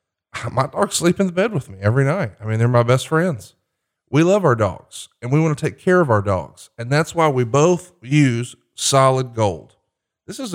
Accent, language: American, English